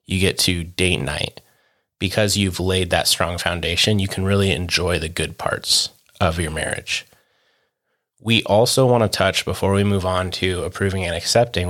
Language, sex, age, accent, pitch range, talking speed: English, male, 20-39, American, 90-105 Hz, 175 wpm